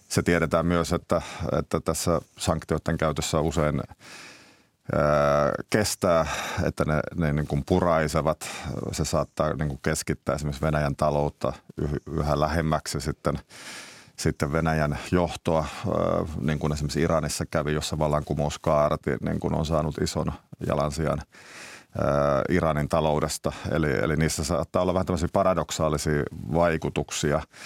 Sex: male